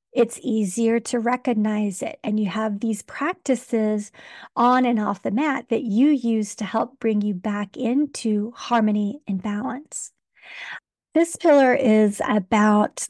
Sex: female